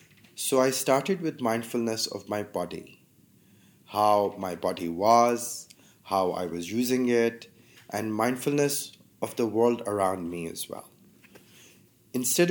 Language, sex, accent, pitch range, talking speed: English, male, Indian, 100-120 Hz, 130 wpm